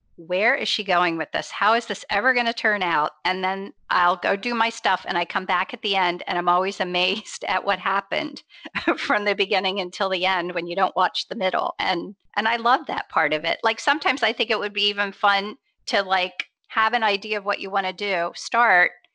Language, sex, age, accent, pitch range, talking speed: English, female, 40-59, American, 180-215 Hz, 240 wpm